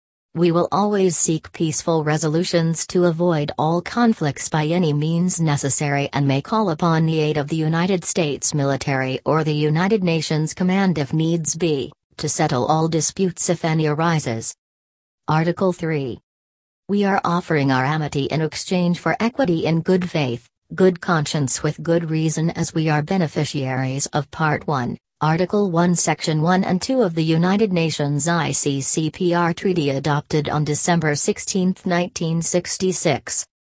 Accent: American